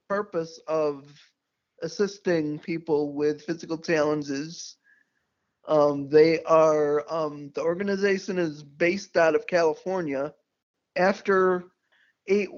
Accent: American